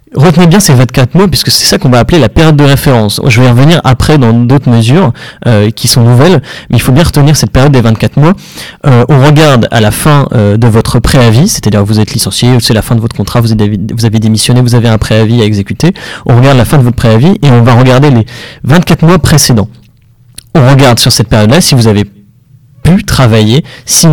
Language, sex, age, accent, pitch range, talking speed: French, male, 30-49, French, 120-150 Hz, 230 wpm